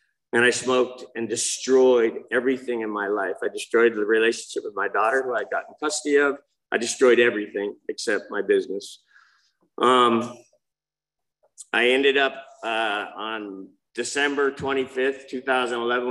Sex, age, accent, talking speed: male, 50-69, American, 135 wpm